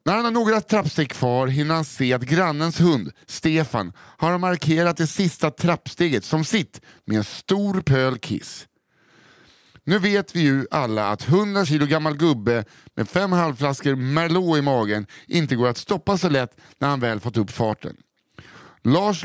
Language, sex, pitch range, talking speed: English, male, 120-170 Hz, 165 wpm